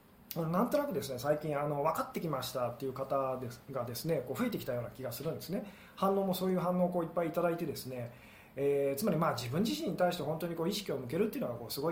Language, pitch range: Japanese, 135-180 Hz